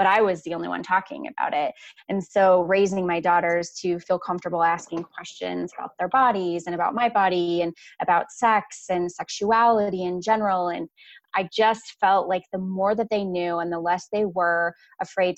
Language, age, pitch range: English, 20-39, 170-195 Hz